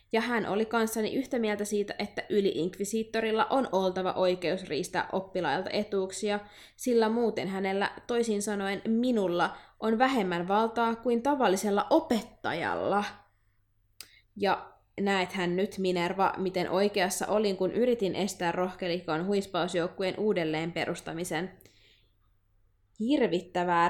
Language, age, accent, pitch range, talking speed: Finnish, 20-39, native, 185-225 Hz, 105 wpm